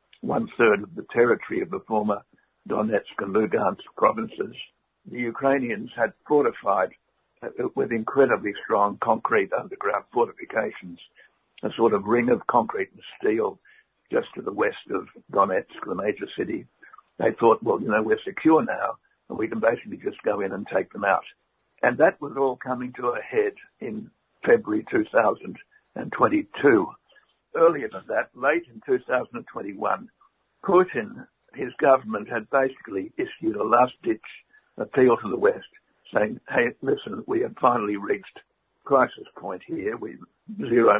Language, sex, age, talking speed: English, male, 60-79, 145 wpm